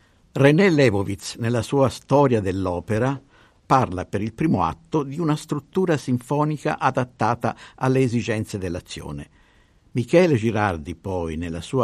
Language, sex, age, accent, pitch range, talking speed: Italian, male, 50-69, native, 100-140 Hz, 120 wpm